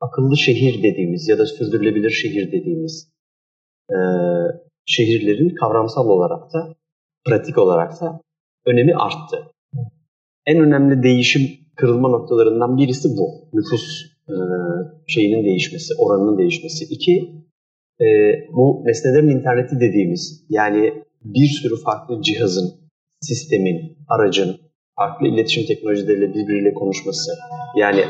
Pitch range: 105-160 Hz